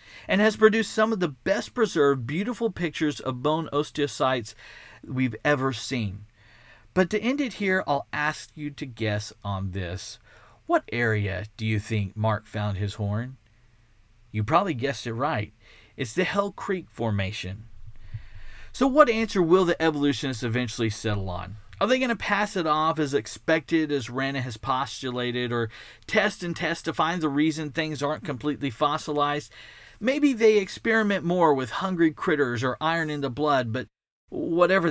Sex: male